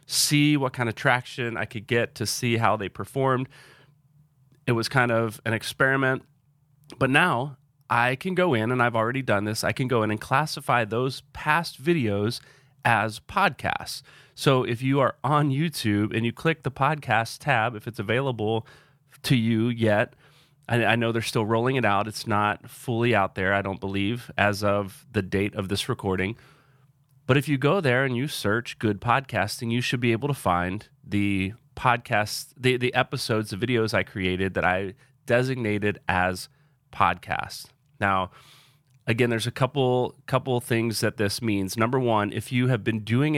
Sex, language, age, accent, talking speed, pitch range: male, English, 30-49, American, 175 wpm, 105-140 Hz